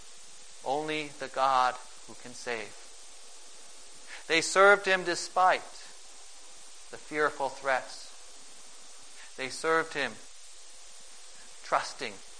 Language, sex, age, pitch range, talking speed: English, male, 40-59, 135-195 Hz, 80 wpm